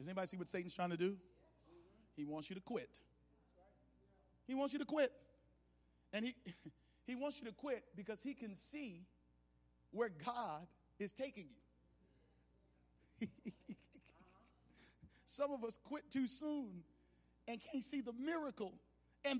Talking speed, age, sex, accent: 140 wpm, 50-69, male, American